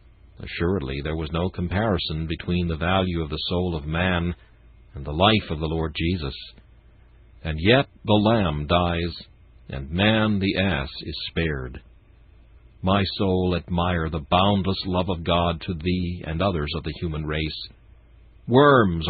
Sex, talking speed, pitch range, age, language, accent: male, 150 wpm, 80-110 Hz, 60-79, English, American